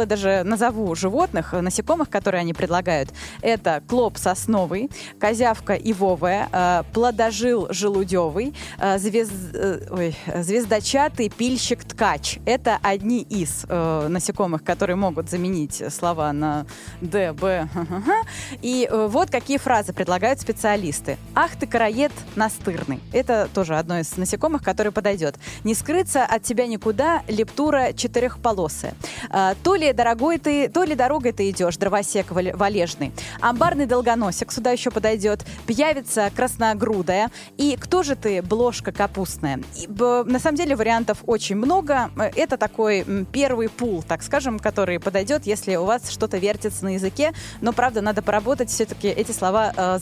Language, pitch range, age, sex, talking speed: Russian, 185-245 Hz, 20-39, female, 130 wpm